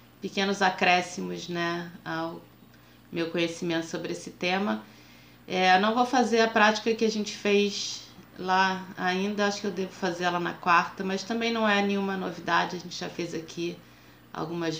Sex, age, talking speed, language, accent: female, 20-39, 165 wpm, Portuguese, Brazilian